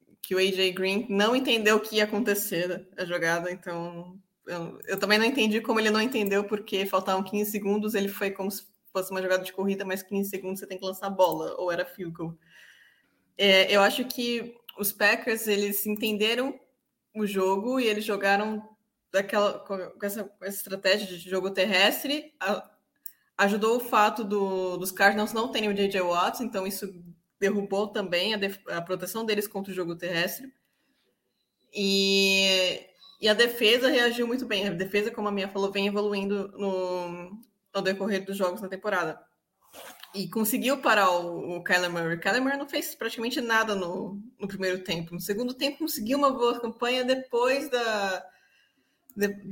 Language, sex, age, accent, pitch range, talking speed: English, female, 20-39, Brazilian, 190-220 Hz, 170 wpm